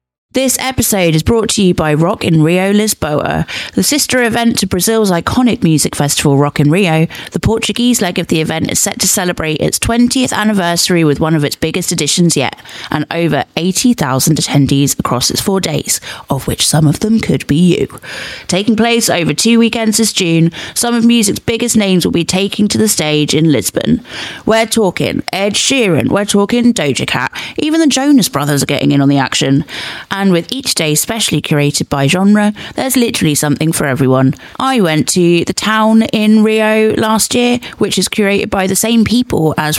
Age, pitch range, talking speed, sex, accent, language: 30-49, 155-225 Hz, 190 wpm, female, British, English